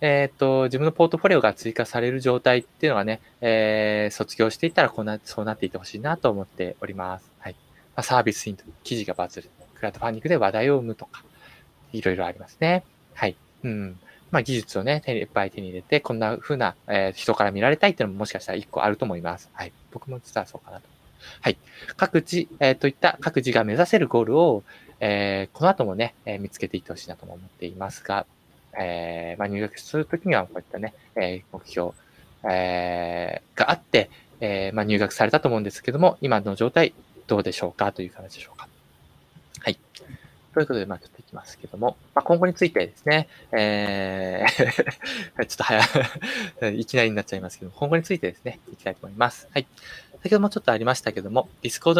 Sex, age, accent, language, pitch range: male, 20-39, native, Japanese, 100-140 Hz